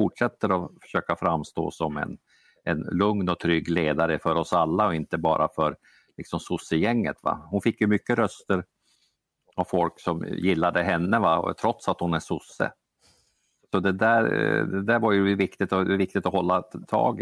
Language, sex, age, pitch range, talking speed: Swedish, male, 50-69, 85-105 Hz, 155 wpm